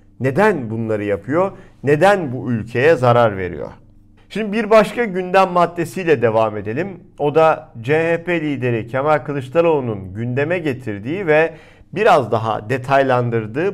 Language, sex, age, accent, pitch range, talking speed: Turkish, male, 50-69, native, 115-165 Hz, 120 wpm